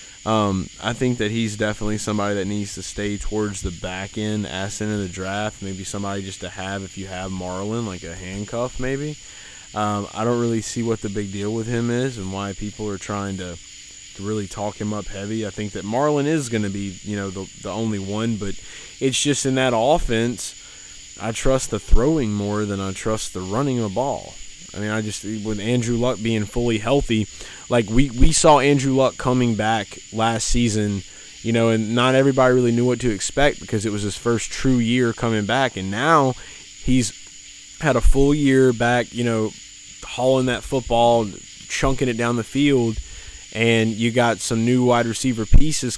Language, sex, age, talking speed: English, male, 20-39, 200 wpm